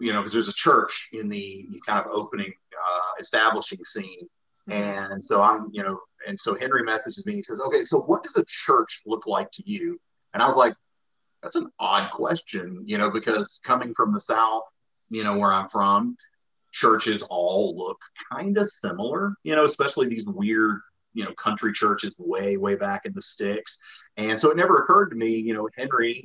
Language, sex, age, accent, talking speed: English, male, 40-59, American, 200 wpm